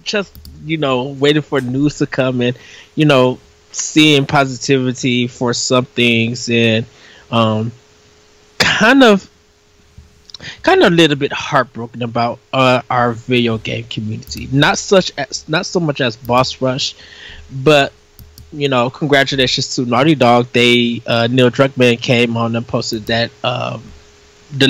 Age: 20-39